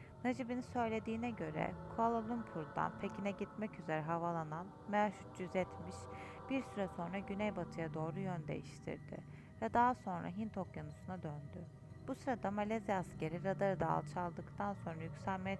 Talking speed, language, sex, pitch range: 125 wpm, Turkish, female, 160-205 Hz